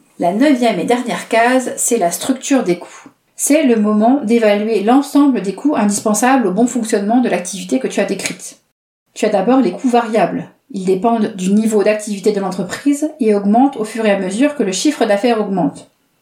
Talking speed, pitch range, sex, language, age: 190 wpm, 200-255 Hz, female, French, 40-59